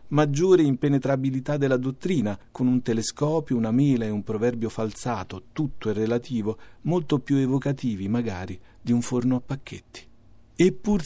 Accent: native